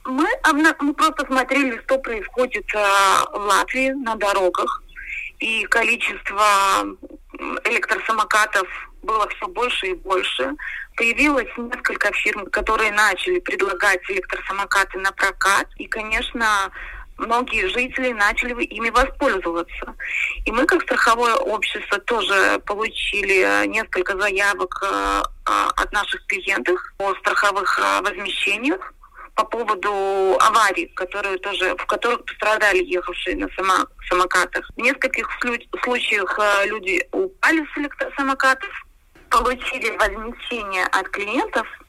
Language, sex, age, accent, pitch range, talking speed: Russian, female, 20-39, native, 200-265 Hz, 100 wpm